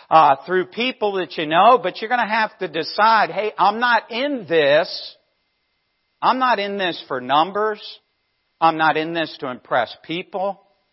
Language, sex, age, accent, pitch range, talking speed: English, male, 50-69, American, 160-215 Hz, 170 wpm